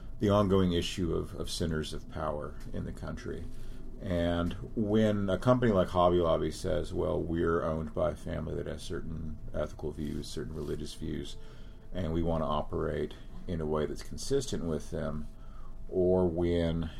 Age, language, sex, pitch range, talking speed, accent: 40-59, English, male, 80-95 Hz, 165 wpm, American